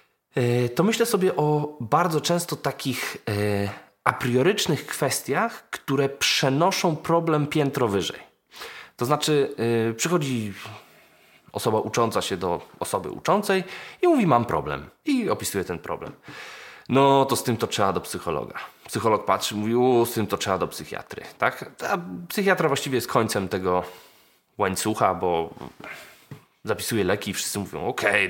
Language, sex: Polish, male